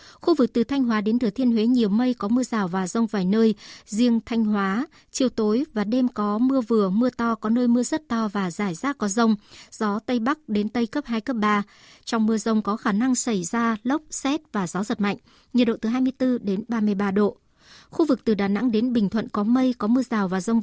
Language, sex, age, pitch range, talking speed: Vietnamese, male, 60-79, 210-250 Hz, 245 wpm